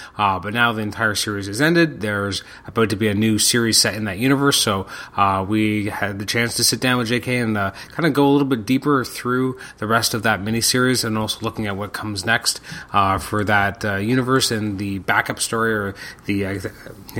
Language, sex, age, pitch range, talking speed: English, male, 30-49, 105-125 Hz, 225 wpm